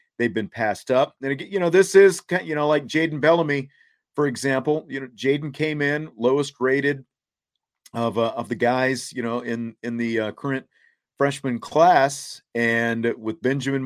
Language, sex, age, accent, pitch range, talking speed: English, male, 40-59, American, 115-140 Hz, 185 wpm